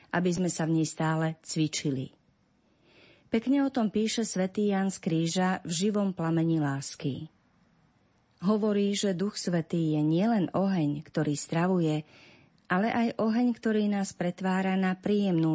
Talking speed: 135 wpm